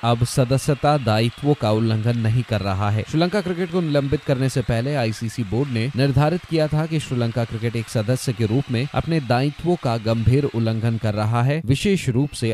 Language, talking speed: Hindi, 195 wpm